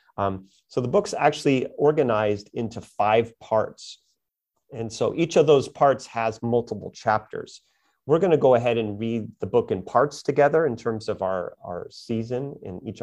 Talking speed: 175 wpm